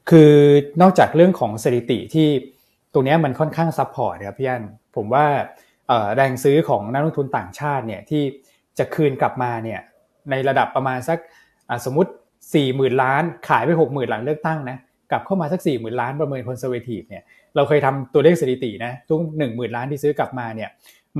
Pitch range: 125-160 Hz